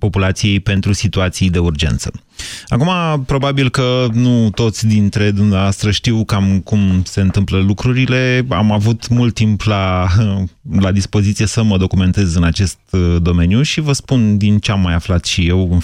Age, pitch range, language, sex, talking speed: 30-49, 95-120 Hz, Romanian, male, 160 wpm